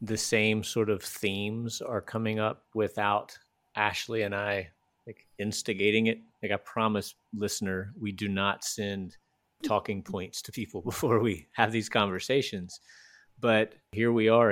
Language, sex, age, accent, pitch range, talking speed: English, male, 30-49, American, 95-110 Hz, 145 wpm